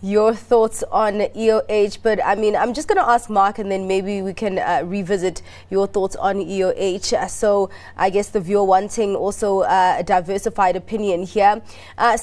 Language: English